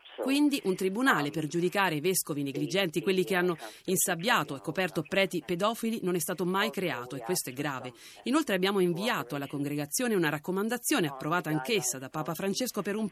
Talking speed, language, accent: 180 wpm, Italian, native